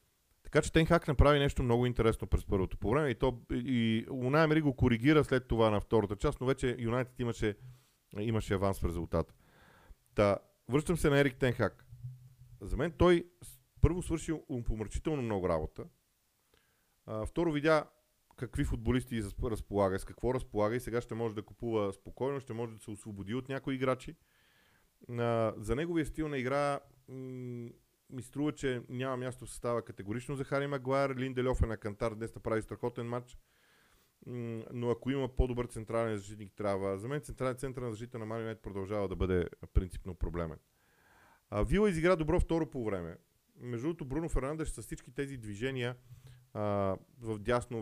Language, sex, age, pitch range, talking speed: Bulgarian, male, 40-59, 110-135 Hz, 160 wpm